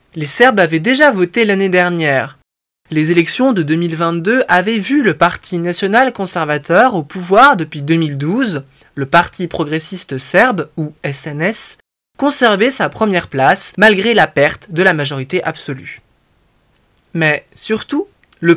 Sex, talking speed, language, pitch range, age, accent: male, 135 wpm, French, 160-225 Hz, 20-39, French